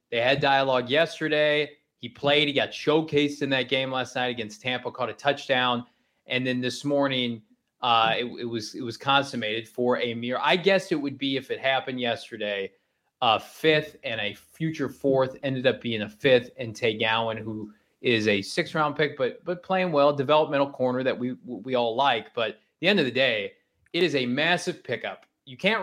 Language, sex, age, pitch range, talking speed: English, male, 20-39, 120-145 Hz, 200 wpm